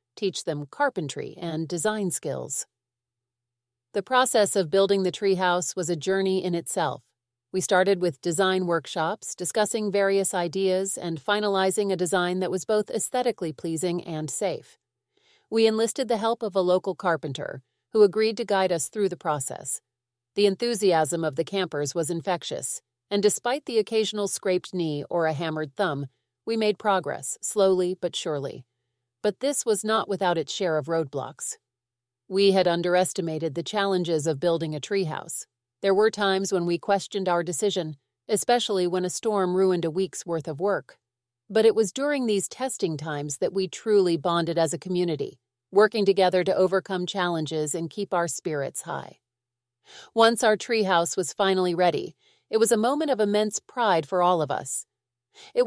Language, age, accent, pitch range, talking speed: English, 40-59, American, 160-205 Hz, 165 wpm